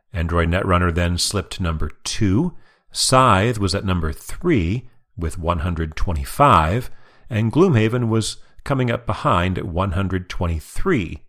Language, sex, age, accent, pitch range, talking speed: English, male, 40-59, American, 85-120 Hz, 115 wpm